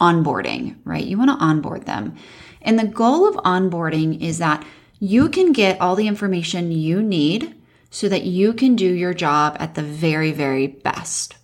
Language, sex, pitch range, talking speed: English, female, 180-250 Hz, 180 wpm